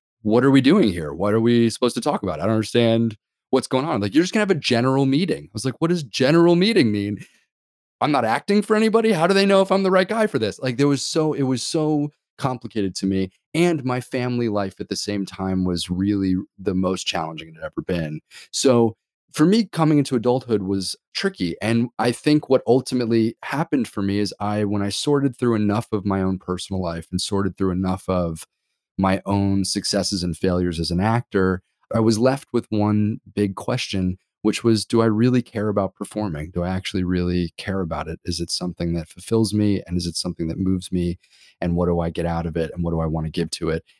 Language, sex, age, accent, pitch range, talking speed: English, male, 30-49, American, 95-125 Hz, 230 wpm